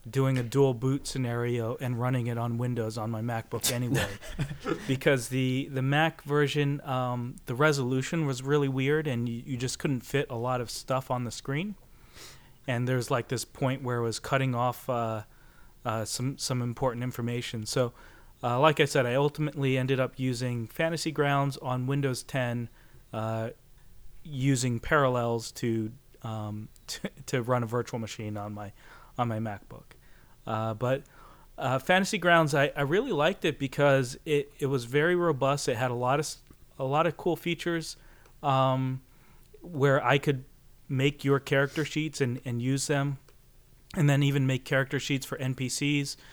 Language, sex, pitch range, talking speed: English, male, 125-145 Hz, 165 wpm